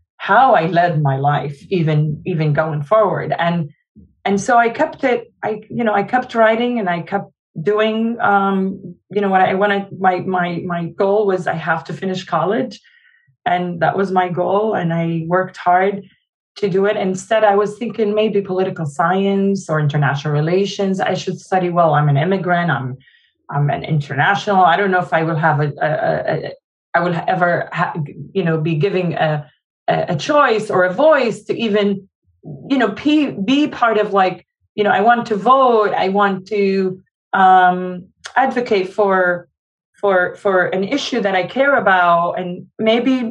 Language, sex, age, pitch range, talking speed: English, female, 20-39, 170-205 Hz, 180 wpm